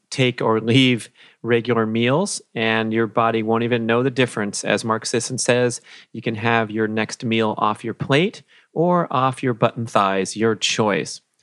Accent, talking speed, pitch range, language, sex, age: American, 175 wpm, 100-120 Hz, English, male, 40-59